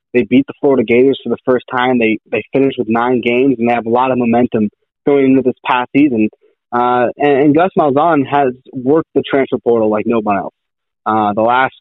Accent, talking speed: American, 220 wpm